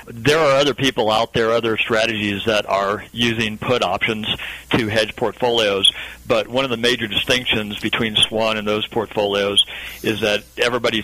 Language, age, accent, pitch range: English, 40-59, American, 105-120 Hz